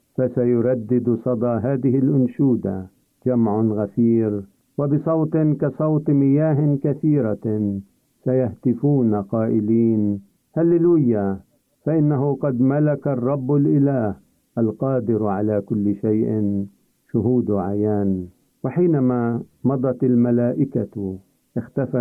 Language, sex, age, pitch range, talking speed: Arabic, male, 50-69, 110-145 Hz, 75 wpm